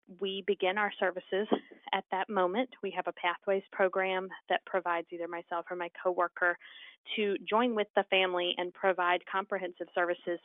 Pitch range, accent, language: 175-195 Hz, American, English